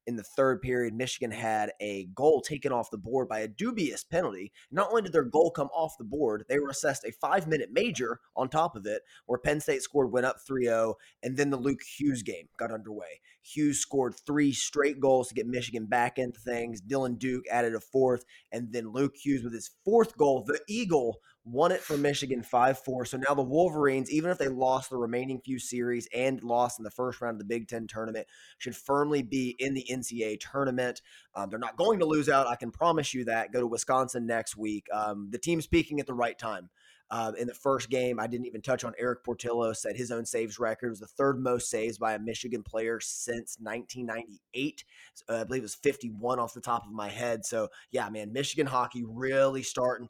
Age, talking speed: 20-39, 220 wpm